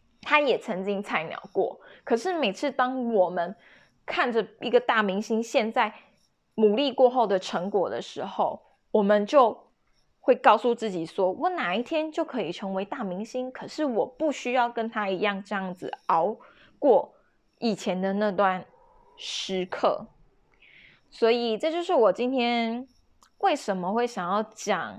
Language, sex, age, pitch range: Chinese, female, 20-39, 195-255 Hz